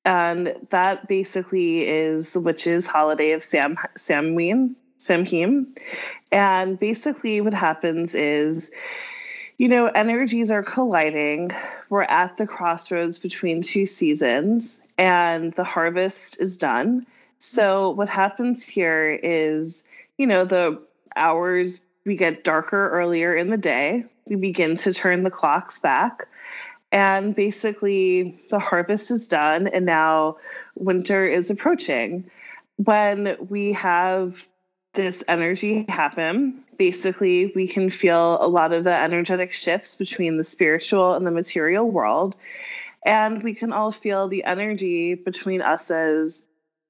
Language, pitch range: English, 170-215 Hz